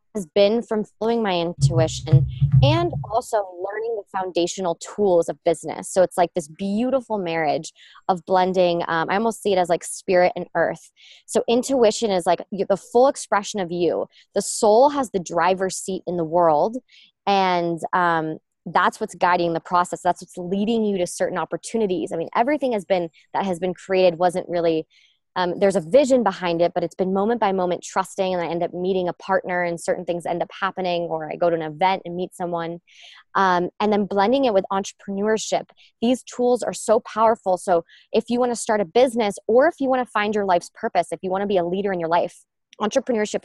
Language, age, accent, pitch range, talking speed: English, 20-39, American, 175-215 Hz, 205 wpm